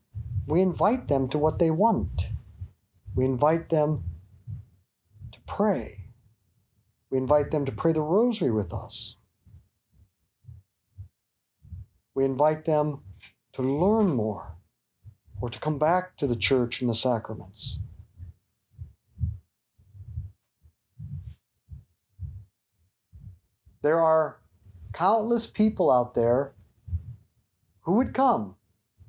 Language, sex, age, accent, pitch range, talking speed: English, male, 50-69, American, 100-155 Hz, 95 wpm